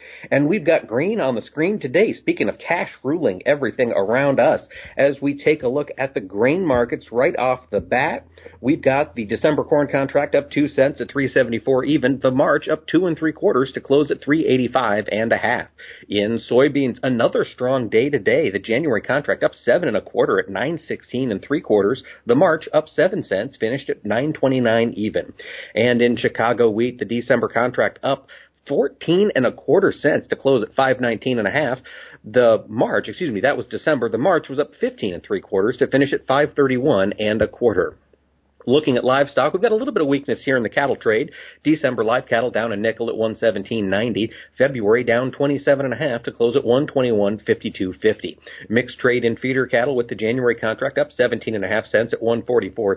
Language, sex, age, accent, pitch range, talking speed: English, male, 40-59, American, 115-150 Hz, 220 wpm